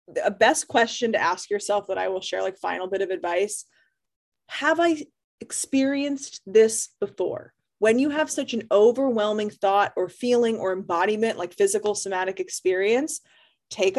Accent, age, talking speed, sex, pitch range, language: American, 20-39, 155 wpm, female, 190-270 Hz, English